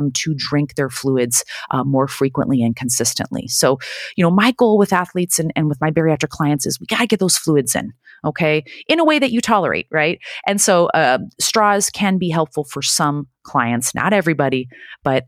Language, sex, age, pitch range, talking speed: English, female, 30-49, 145-195 Hz, 200 wpm